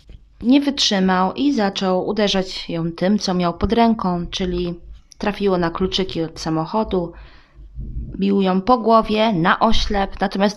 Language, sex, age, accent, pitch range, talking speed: Polish, female, 20-39, native, 165-210 Hz, 135 wpm